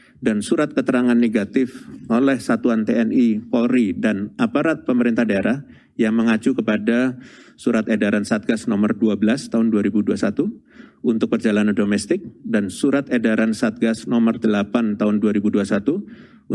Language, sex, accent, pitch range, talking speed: Indonesian, male, native, 110-145 Hz, 120 wpm